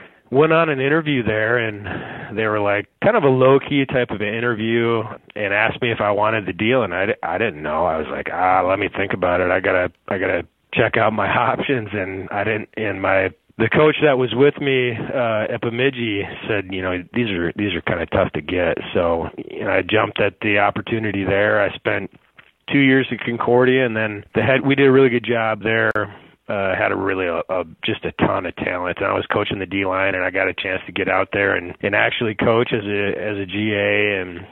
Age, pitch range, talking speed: 30-49, 100-120 Hz, 240 wpm